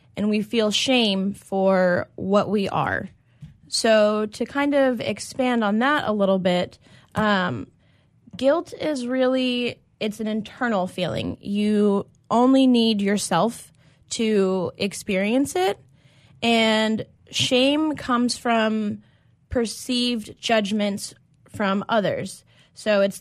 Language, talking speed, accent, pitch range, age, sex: English, 110 wpm, American, 185-220 Hz, 10-29, female